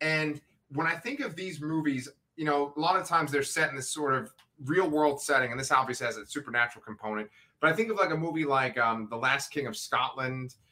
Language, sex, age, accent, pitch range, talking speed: English, male, 30-49, American, 125-155 Hz, 240 wpm